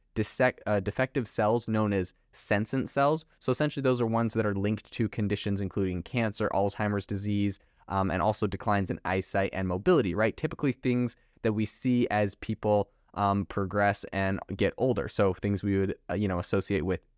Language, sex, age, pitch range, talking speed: English, male, 20-39, 100-120 Hz, 180 wpm